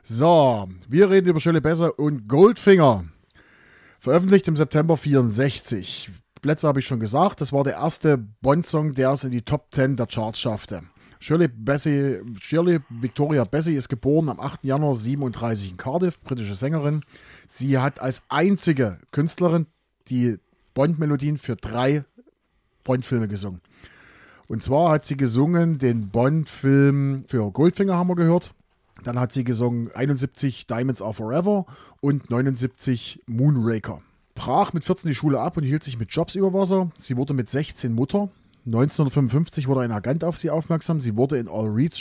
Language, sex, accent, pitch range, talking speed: German, male, German, 125-160 Hz, 155 wpm